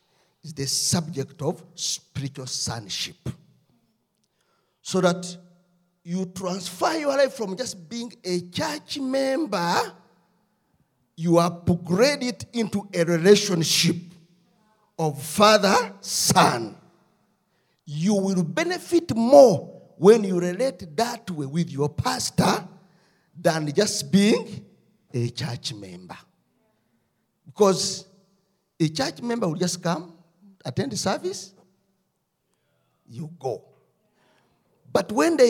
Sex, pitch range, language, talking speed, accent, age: male, 170-215 Hz, English, 100 wpm, South African, 50-69